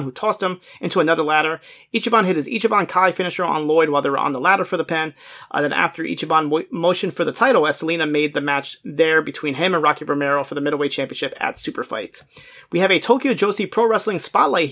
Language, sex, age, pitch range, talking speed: English, male, 30-49, 145-185 Hz, 235 wpm